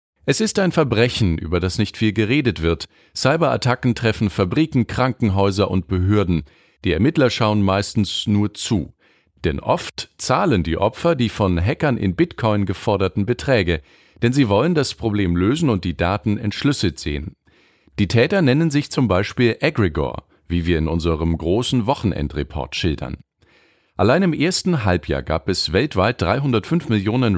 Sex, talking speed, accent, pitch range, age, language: male, 150 wpm, German, 90-125 Hz, 50-69, German